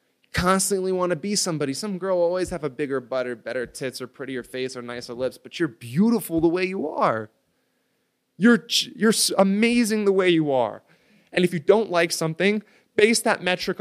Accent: American